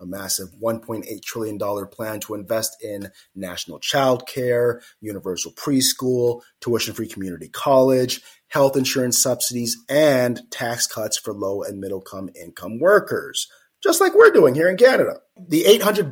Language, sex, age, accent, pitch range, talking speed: English, male, 30-49, American, 105-140 Hz, 135 wpm